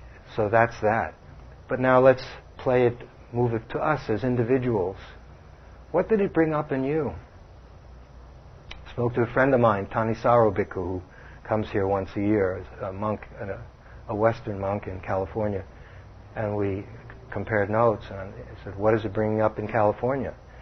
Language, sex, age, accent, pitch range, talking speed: English, male, 60-79, American, 95-125 Hz, 165 wpm